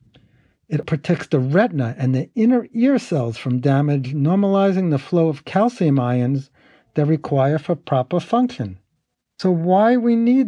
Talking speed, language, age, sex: 150 wpm, English, 50-69, male